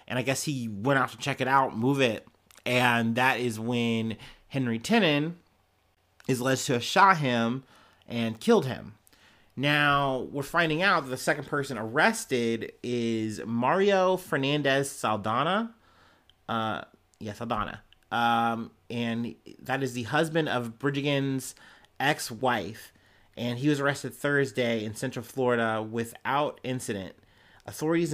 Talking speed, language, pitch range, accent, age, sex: 135 wpm, English, 115-150 Hz, American, 30-49, male